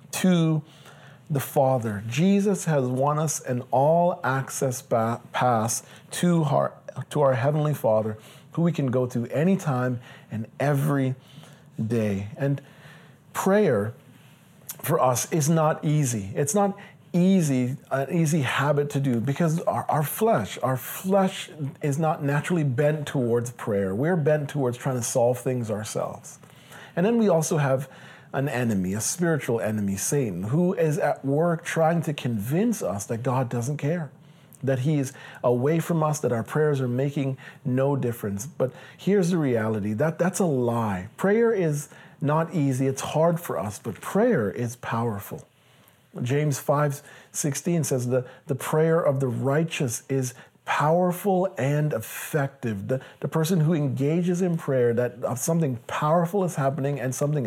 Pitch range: 125-160 Hz